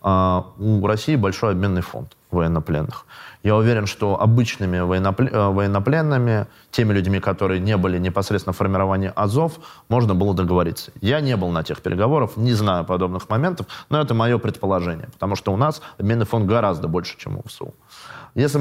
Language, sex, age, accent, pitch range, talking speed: Russian, male, 20-39, native, 95-125 Hz, 160 wpm